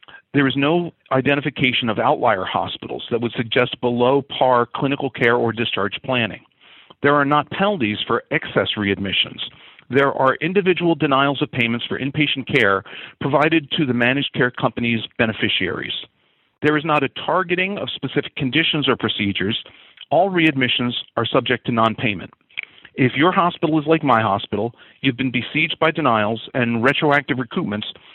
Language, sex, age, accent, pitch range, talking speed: English, male, 40-59, American, 120-155 Hz, 150 wpm